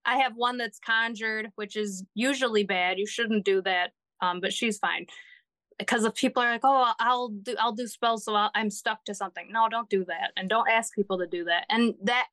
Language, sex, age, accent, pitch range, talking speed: English, female, 20-39, American, 210-245 Hz, 230 wpm